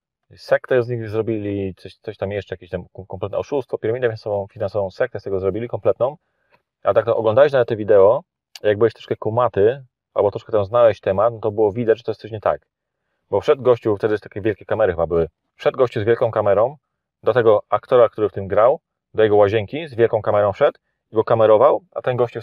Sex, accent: male, native